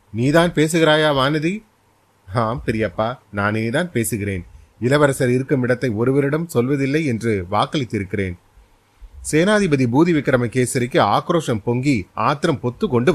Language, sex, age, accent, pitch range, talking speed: Tamil, male, 30-49, native, 105-145 Hz, 80 wpm